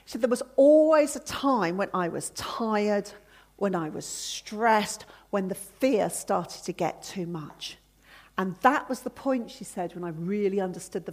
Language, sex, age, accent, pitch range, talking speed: English, female, 40-59, British, 185-250 Hz, 190 wpm